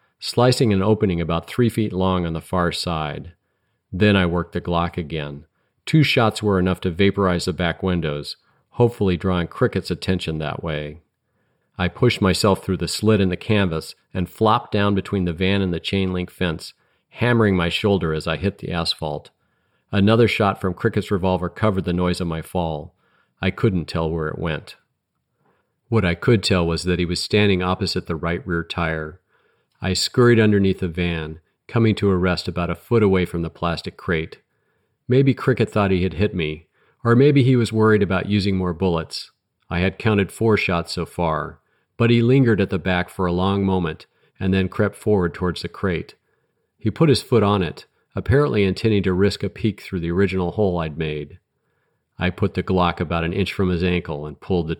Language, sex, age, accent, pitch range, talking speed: English, male, 40-59, American, 85-105 Hz, 195 wpm